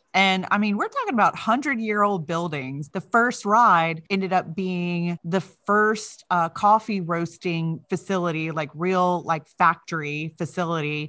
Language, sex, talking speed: English, female, 145 wpm